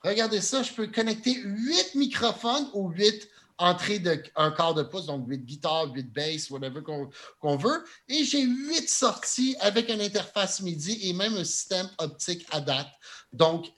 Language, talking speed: French, 170 wpm